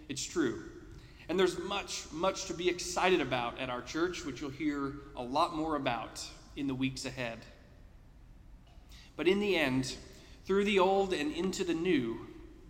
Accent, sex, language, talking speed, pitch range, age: American, male, English, 165 wpm, 130-185 Hz, 40-59